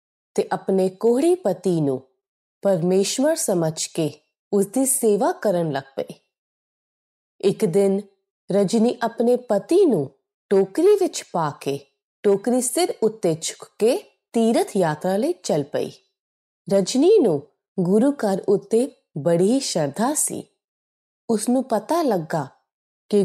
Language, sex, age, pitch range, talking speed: Punjabi, female, 30-49, 185-275 Hz, 120 wpm